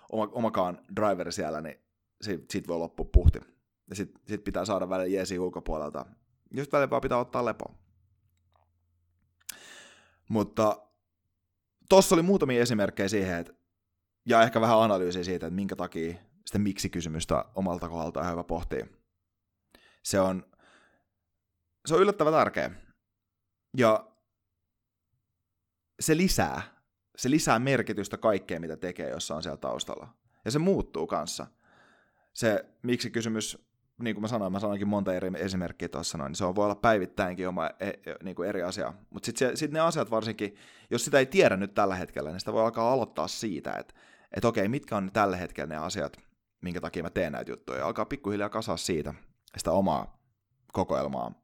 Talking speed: 155 wpm